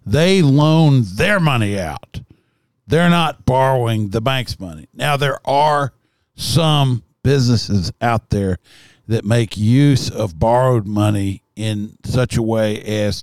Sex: male